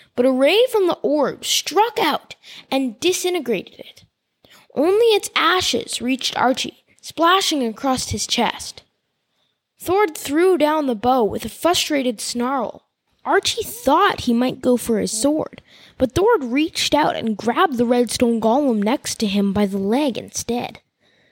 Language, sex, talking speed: English, female, 150 wpm